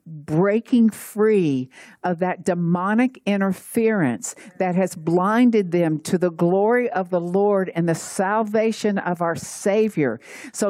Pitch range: 175-220 Hz